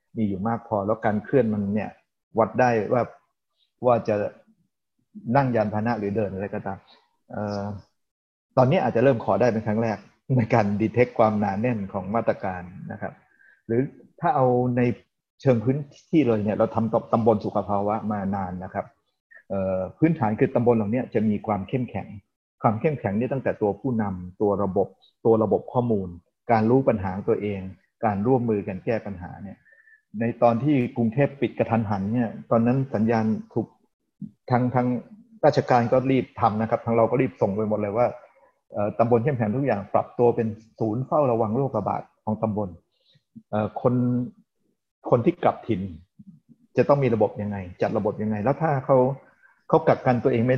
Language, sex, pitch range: Thai, male, 105-125 Hz